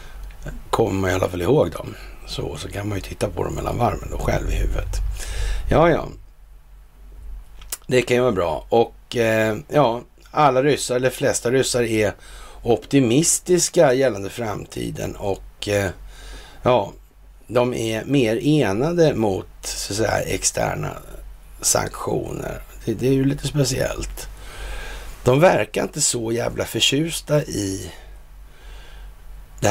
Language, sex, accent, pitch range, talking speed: Swedish, male, native, 90-135 Hz, 135 wpm